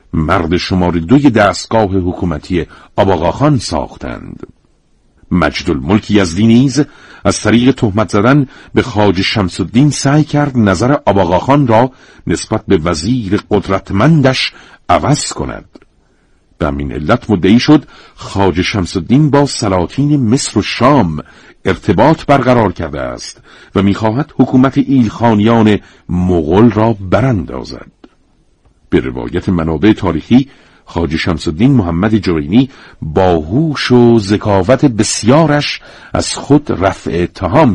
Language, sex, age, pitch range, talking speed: Persian, male, 50-69, 90-125 Hz, 105 wpm